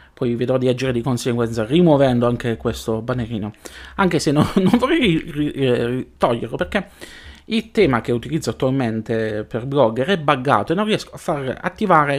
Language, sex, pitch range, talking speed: Italian, male, 115-155 Hz, 160 wpm